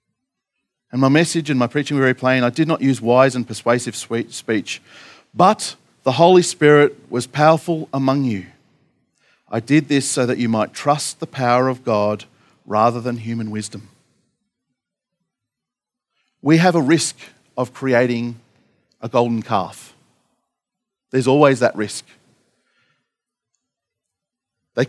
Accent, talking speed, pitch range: Australian, 135 wpm, 110-135 Hz